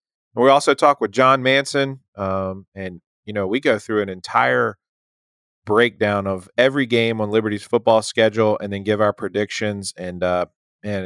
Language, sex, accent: English, male, American